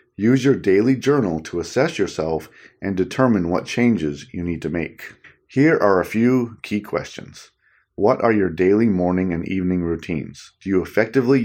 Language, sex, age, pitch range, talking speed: English, male, 40-59, 85-110 Hz, 170 wpm